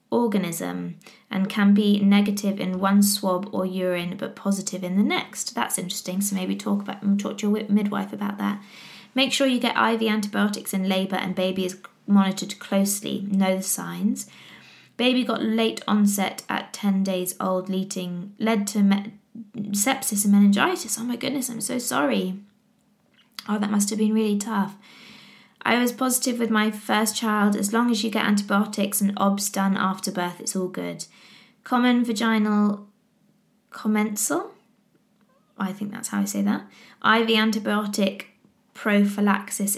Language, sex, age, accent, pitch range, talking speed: English, female, 20-39, British, 190-220 Hz, 160 wpm